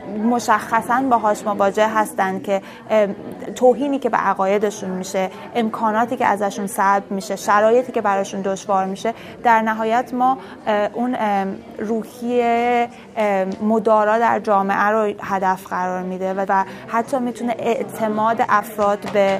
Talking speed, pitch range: 120 wpm, 195-225 Hz